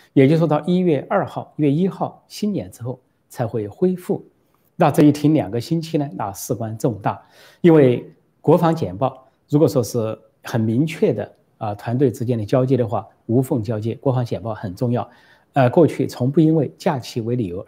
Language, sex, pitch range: Chinese, male, 115-150 Hz